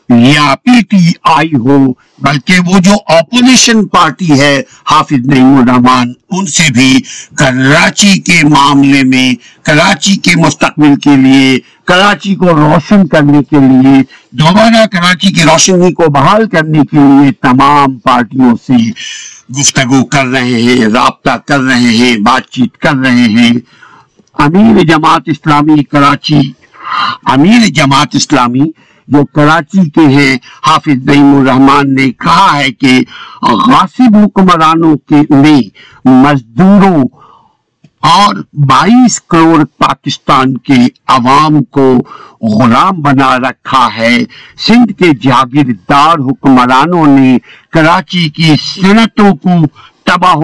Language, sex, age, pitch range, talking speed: Urdu, male, 60-79, 135-180 Hz, 110 wpm